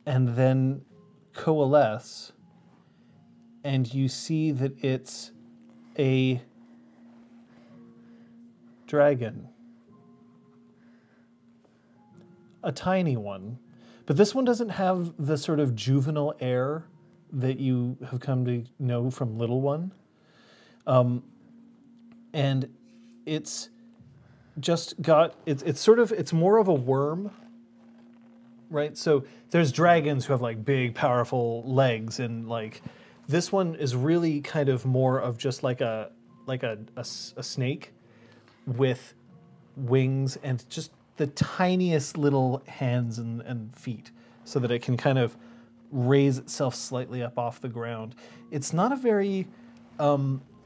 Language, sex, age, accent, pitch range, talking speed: English, male, 40-59, American, 120-180 Hz, 120 wpm